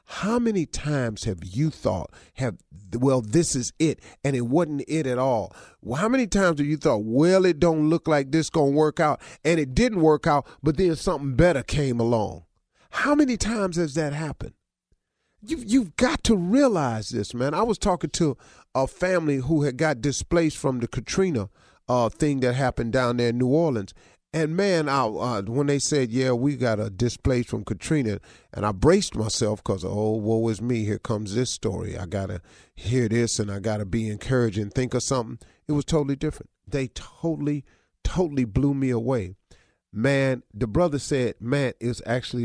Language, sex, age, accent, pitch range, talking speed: English, male, 40-59, American, 115-155 Hz, 195 wpm